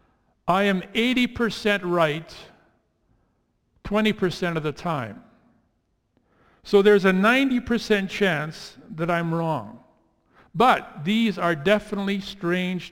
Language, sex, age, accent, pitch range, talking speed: English, male, 50-69, American, 175-220 Hz, 100 wpm